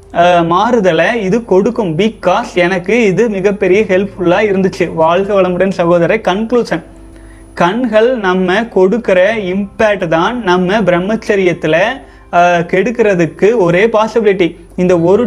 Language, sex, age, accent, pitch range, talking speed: Tamil, male, 30-49, native, 180-225 Hz, 100 wpm